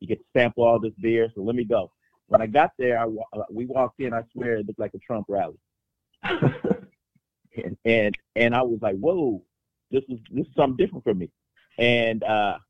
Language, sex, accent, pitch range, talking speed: English, male, American, 115-140 Hz, 215 wpm